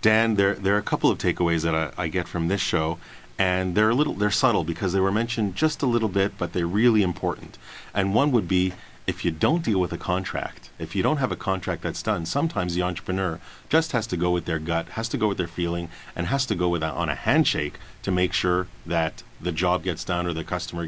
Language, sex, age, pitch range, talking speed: English, male, 40-59, 85-105 Hz, 250 wpm